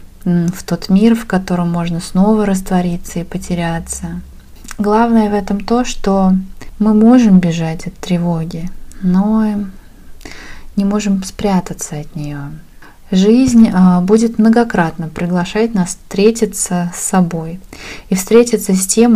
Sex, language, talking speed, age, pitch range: female, Russian, 120 wpm, 20-39, 175-215 Hz